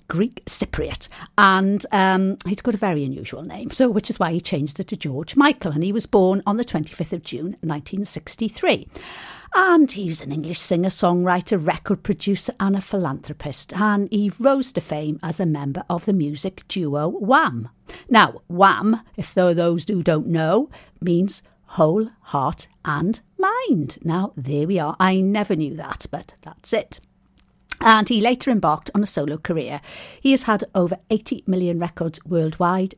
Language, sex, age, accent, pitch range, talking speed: English, female, 50-69, British, 155-200 Hz, 170 wpm